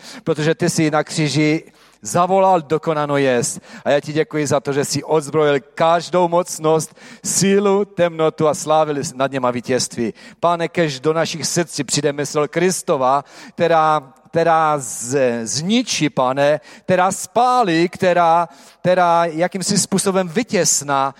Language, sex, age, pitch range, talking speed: Czech, male, 40-59, 130-170 Hz, 125 wpm